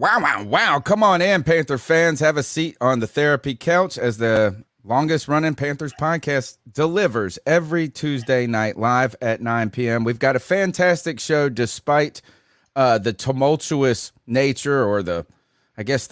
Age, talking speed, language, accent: 30-49, 160 wpm, English, American